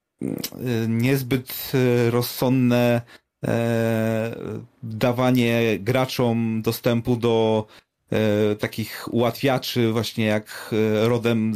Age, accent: 30-49, native